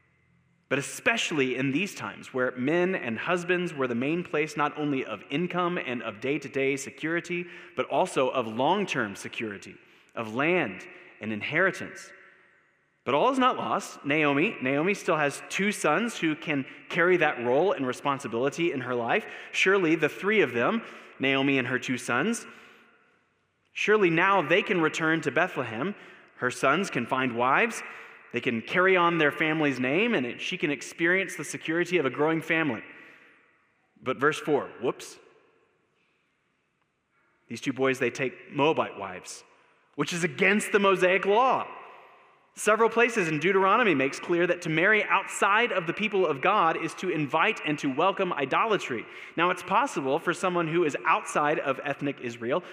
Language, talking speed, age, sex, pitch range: English, 160 wpm, 20-39, male, 140-190 Hz